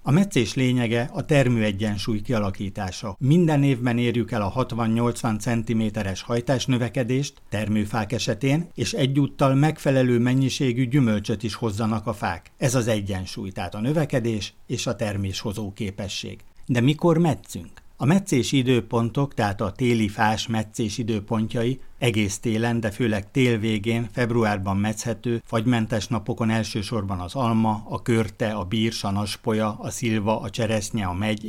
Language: Hungarian